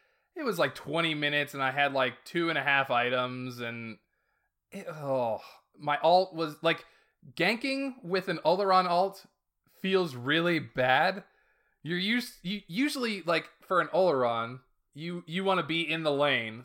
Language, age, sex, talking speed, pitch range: English, 20-39, male, 160 wpm, 125-180 Hz